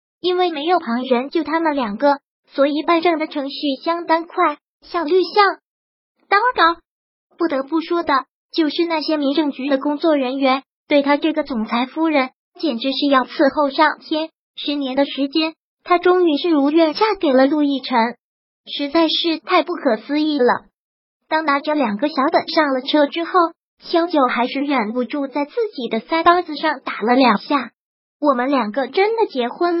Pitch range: 265-330 Hz